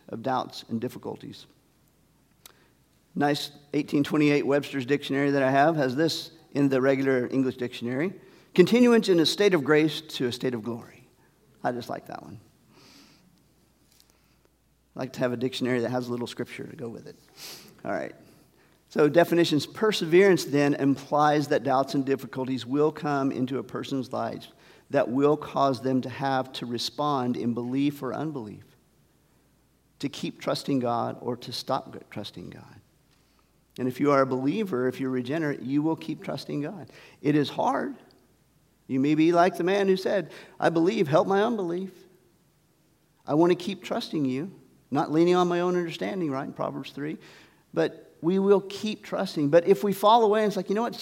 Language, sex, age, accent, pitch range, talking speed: English, male, 50-69, American, 130-180 Hz, 175 wpm